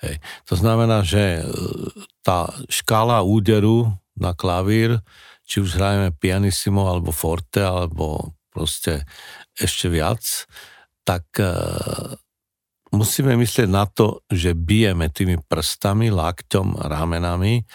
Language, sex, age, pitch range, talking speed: Slovak, male, 50-69, 90-105 Hz, 100 wpm